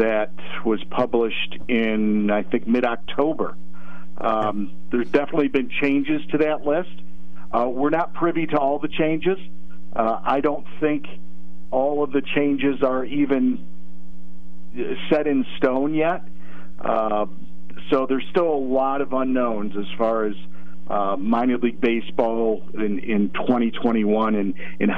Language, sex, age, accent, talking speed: English, male, 50-69, American, 135 wpm